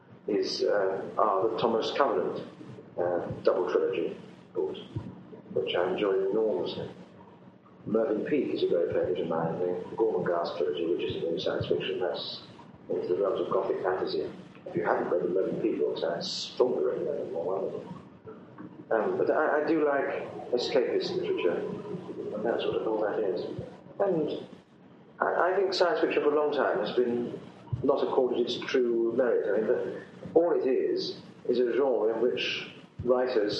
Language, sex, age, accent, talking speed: English, male, 40-59, British, 170 wpm